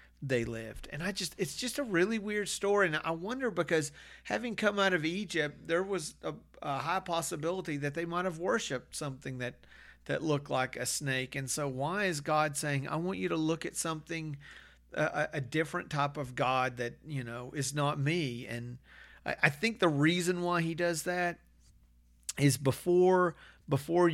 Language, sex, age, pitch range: English, male, 40-59, 130-165 Hz